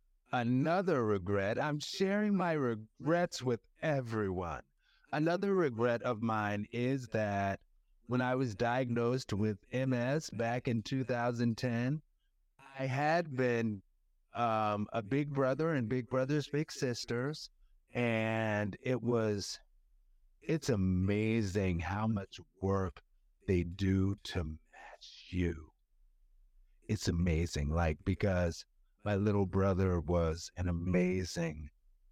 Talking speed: 110 wpm